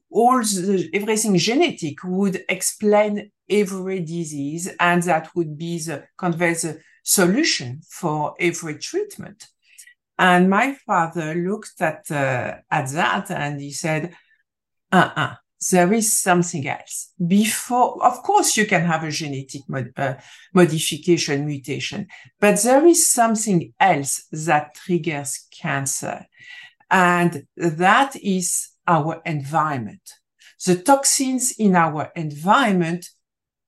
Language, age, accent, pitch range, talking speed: English, 50-69, French, 160-215 Hz, 115 wpm